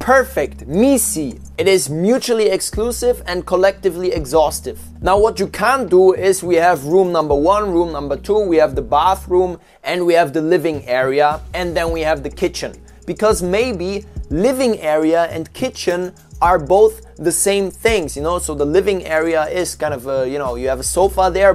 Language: English